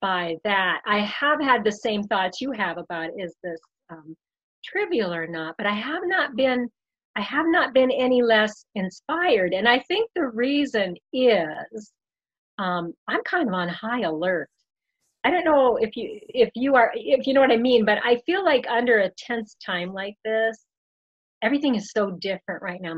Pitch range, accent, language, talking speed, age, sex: 190-255 Hz, American, English, 190 wpm, 40-59, female